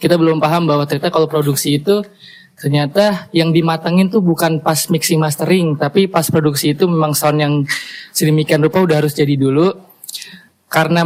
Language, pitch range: Indonesian, 145-170 Hz